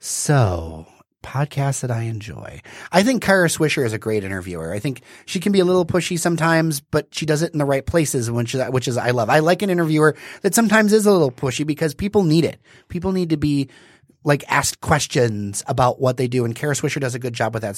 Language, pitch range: English, 120-155 Hz